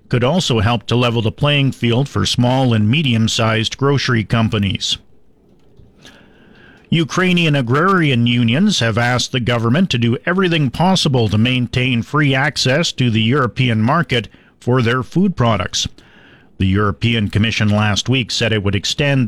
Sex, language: male, English